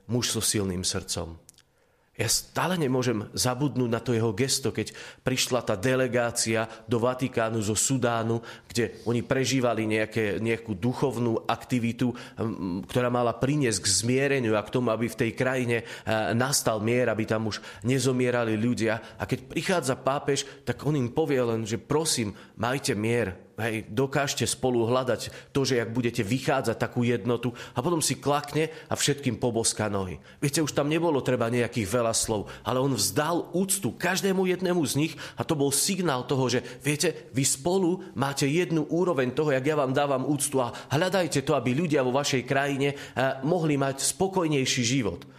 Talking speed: 165 wpm